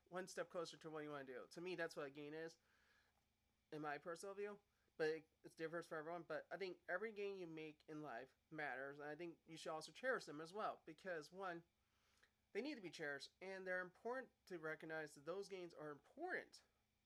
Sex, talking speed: male, 220 wpm